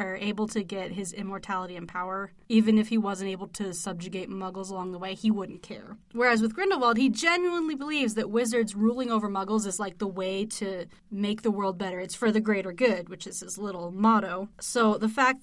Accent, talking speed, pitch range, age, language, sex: American, 210 wpm, 195-230 Hz, 20-39, English, female